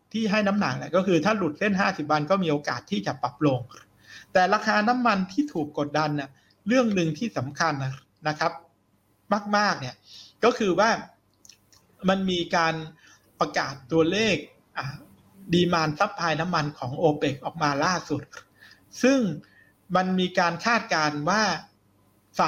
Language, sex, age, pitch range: Thai, male, 60-79, 150-185 Hz